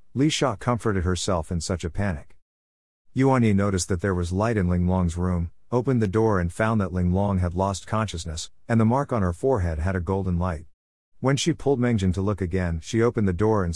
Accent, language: American, English